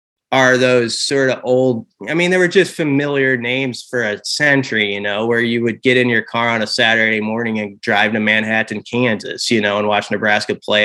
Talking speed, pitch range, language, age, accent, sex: 215 wpm, 110-130 Hz, English, 20-39, American, male